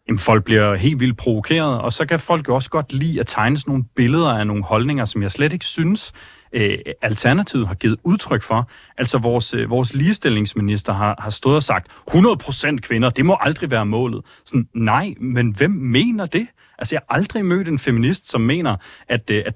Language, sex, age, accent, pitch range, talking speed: Danish, male, 30-49, native, 110-145 Hz, 200 wpm